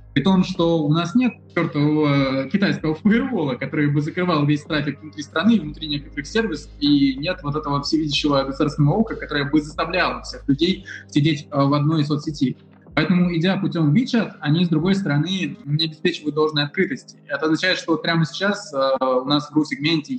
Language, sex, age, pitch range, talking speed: Russian, male, 20-39, 145-190 Hz, 170 wpm